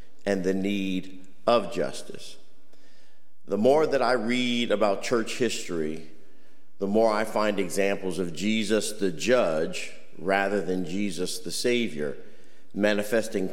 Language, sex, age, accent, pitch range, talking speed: English, male, 50-69, American, 100-125 Hz, 125 wpm